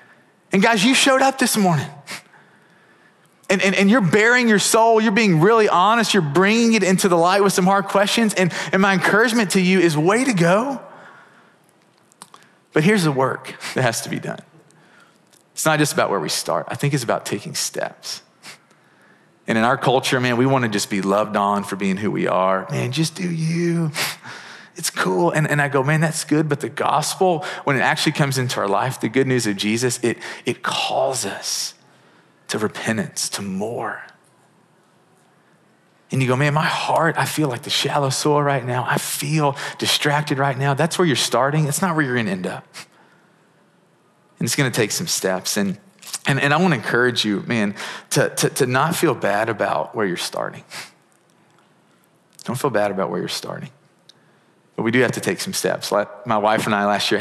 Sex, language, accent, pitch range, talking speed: male, English, American, 125-190 Hz, 200 wpm